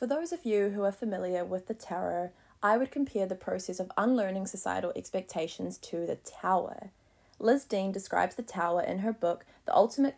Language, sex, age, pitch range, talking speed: English, female, 20-39, 180-230 Hz, 190 wpm